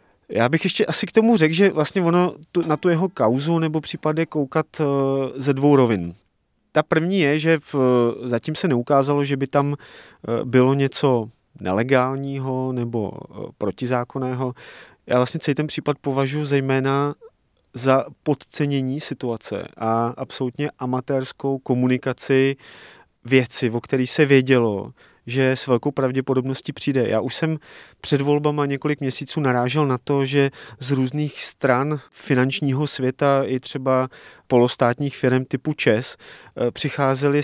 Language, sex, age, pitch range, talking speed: Czech, male, 30-49, 125-140 Hz, 140 wpm